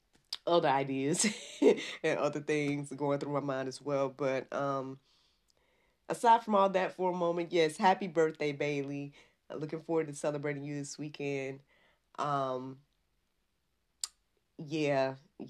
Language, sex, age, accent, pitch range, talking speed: English, female, 20-39, American, 135-170 Hz, 130 wpm